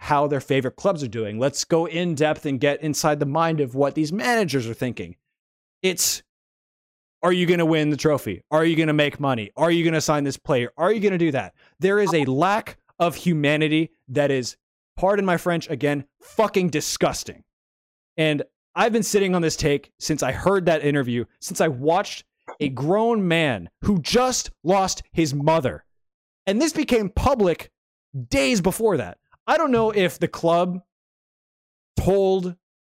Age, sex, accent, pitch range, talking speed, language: 20-39, male, American, 140-180 Hz, 180 wpm, English